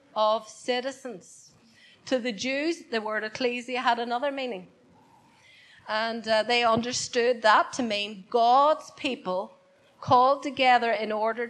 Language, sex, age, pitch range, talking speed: English, female, 40-59, 225-275 Hz, 125 wpm